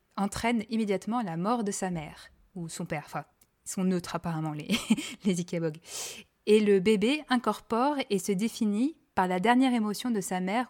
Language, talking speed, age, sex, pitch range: French, 180 wpm, 20-39, female, 180-220 Hz